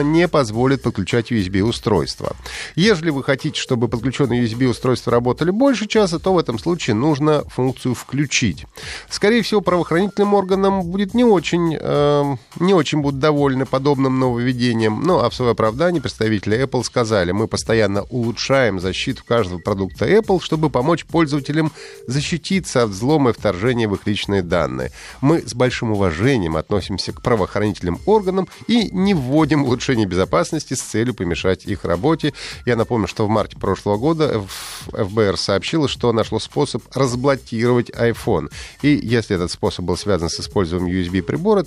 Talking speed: 150 wpm